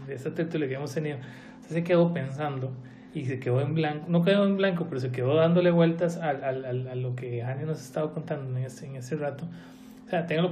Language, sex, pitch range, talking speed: Spanish, male, 135-160 Hz, 250 wpm